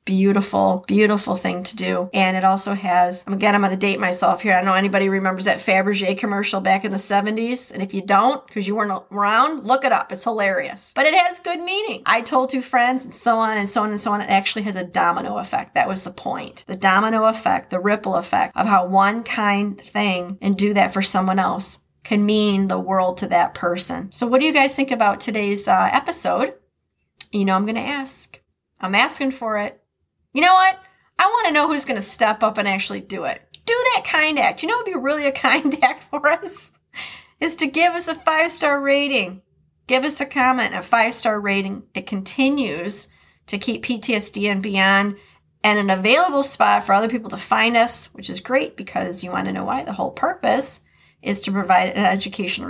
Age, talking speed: 40-59, 220 wpm